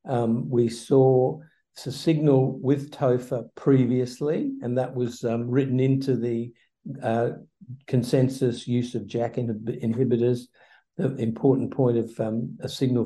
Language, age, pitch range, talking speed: English, 60-79, 115-135 Hz, 130 wpm